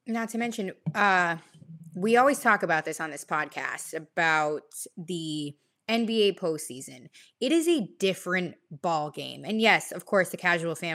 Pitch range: 165-215 Hz